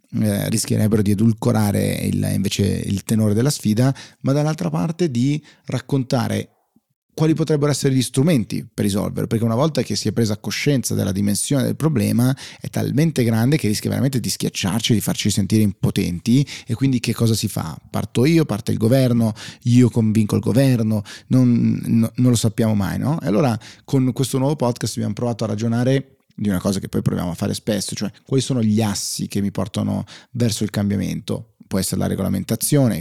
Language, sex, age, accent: Italian, male, 30-49, native